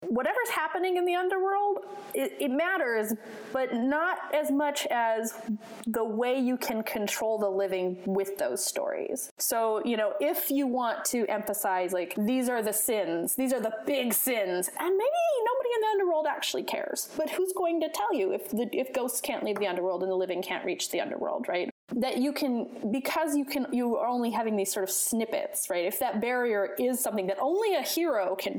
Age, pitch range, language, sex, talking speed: 20-39, 210-285 Hz, English, female, 200 wpm